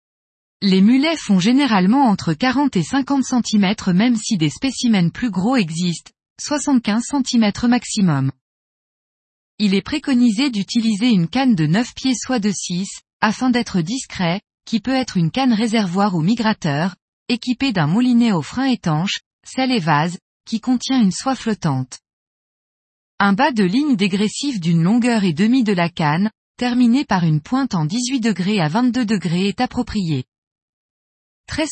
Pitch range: 180-245 Hz